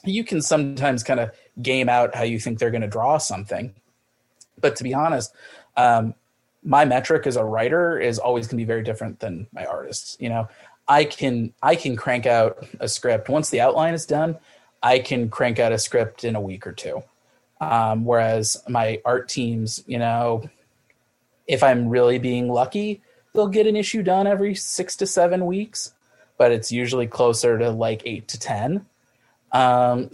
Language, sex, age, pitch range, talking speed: English, male, 30-49, 115-145 Hz, 185 wpm